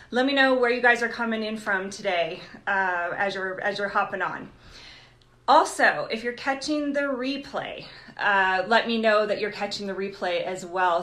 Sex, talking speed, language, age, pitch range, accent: female, 190 wpm, English, 30-49, 185-245 Hz, American